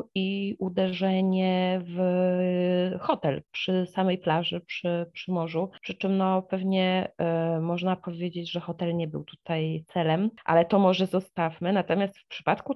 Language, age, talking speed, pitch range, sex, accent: Polish, 30-49, 130 wpm, 165-195 Hz, female, native